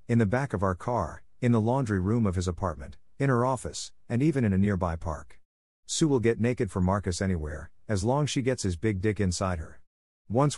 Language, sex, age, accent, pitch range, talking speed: English, male, 50-69, American, 90-115 Hz, 225 wpm